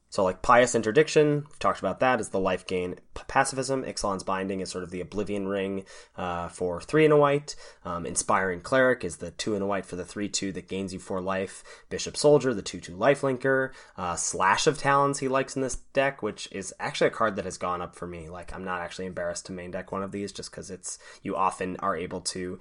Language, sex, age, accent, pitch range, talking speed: English, male, 20-39, American, 95-125 Hz, 235 wpm